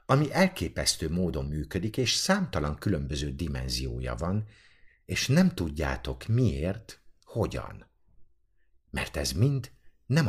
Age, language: 50-69, Hungarian